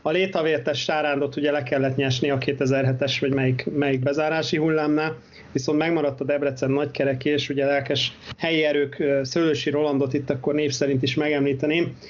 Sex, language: male, Hungarian